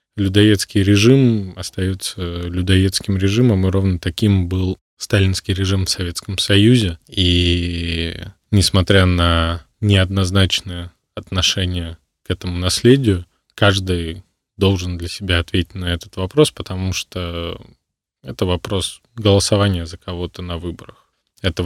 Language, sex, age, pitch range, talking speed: Russian, male, 20-39, 90-100 Hz, 110 wpm